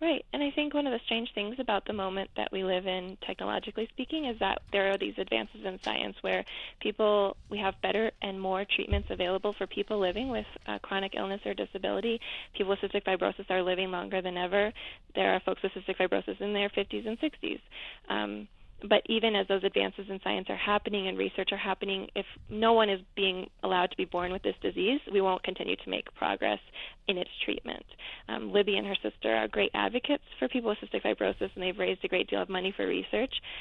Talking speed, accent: 215 wpm, American